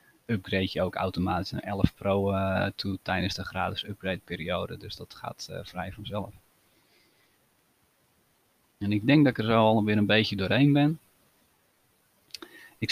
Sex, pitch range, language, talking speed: male, 100-115 Hz, Dutch, 160 wpm